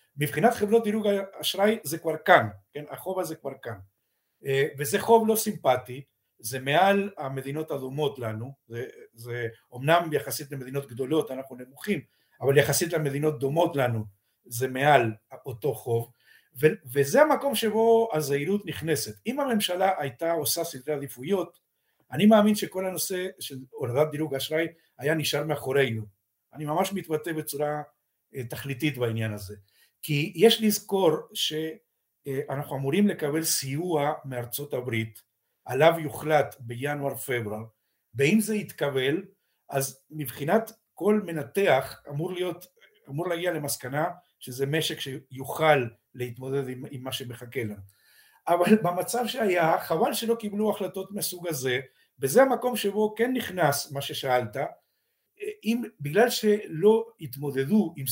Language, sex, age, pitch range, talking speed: Hebrew, male, 50-69, 130-185 Hz, 125 wpm